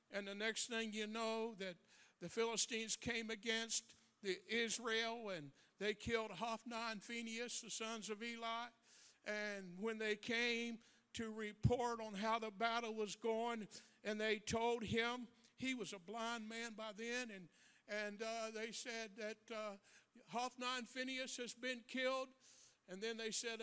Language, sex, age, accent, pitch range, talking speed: English, male, 60-79, American, 215-245 Hz, 155 wpm